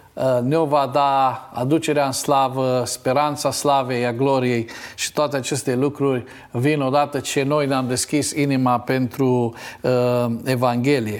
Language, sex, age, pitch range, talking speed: Romanian, male, 50-69, 130-165 Hz, 130 wpm